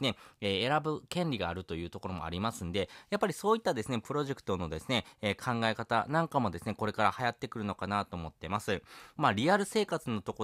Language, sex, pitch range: Japanese, male, 95-135 Hz